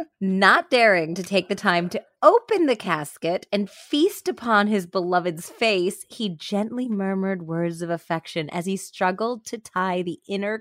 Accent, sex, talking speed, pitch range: American, female, 165 wpm, 155-205 Hz